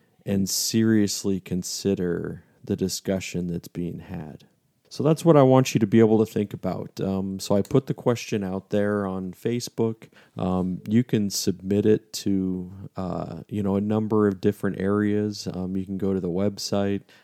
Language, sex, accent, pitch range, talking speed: English, male, American, 95-110 Hz, 180 wpm